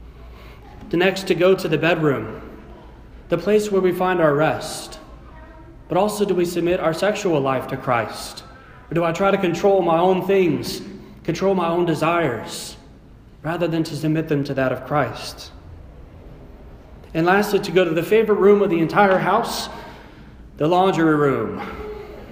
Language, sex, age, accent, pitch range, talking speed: English, male, 30-49, American, 140-190 Hz, 165 wpm